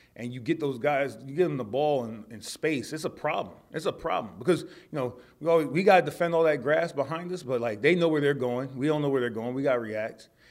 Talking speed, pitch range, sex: 280 wpm, 120-140 Hz, male